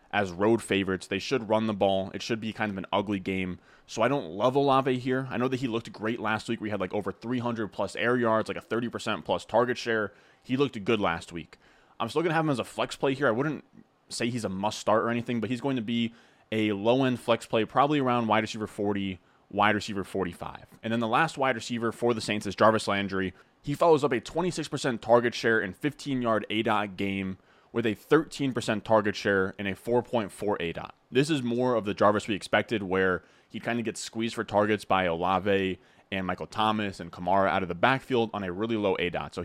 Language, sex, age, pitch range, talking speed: English, male, 20-39, 100-120 Hz, 235 wpm